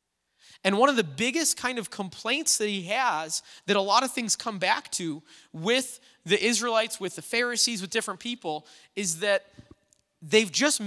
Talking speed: 175 wpm